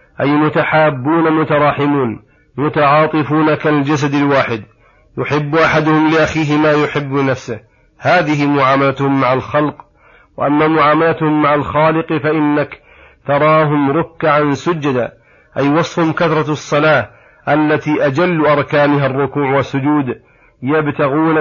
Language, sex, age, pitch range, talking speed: Arabic, male, 40-59, 140-155 Hz, 95 wpm